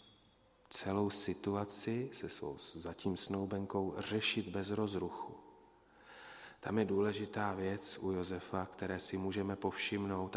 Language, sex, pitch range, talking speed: Slovak, male, 95-105 Hz, 110 wpm